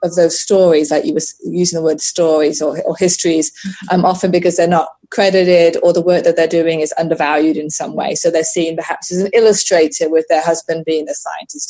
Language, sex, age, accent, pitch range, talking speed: English, female, 20-39, British, 165-195 Hz, 220 wpm